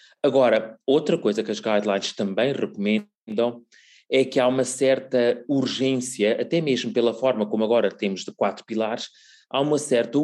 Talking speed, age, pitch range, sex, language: 160 wpm, 30-49, 110-130 Hz, male, Portuguese